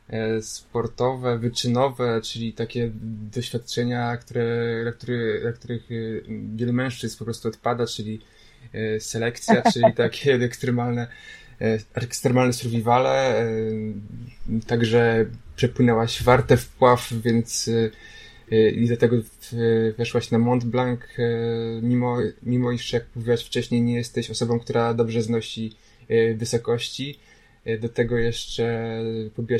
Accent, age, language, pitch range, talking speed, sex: native, 20-39, Polish, 115-120 Hz, 100 wpm, male